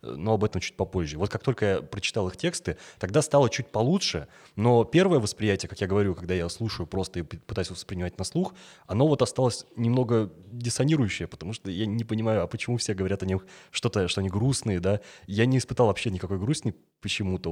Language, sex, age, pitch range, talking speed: Russian, male, 20-39, 95-120 Hz, 200 wpm